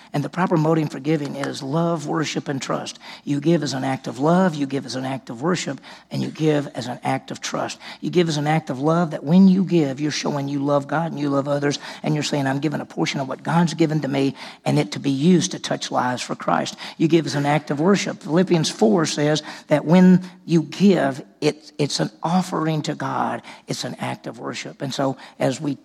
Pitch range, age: 145-170 Hz, 50-69